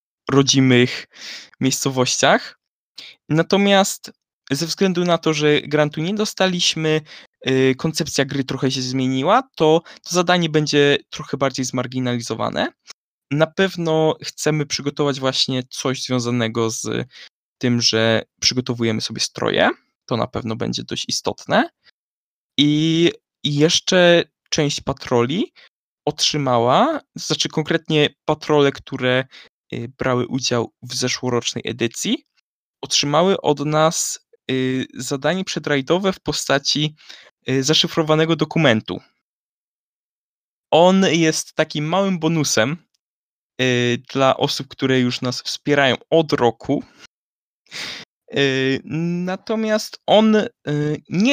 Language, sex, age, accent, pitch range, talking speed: Polish, male, 20-39, native, 130-170 Hz, 95 wpm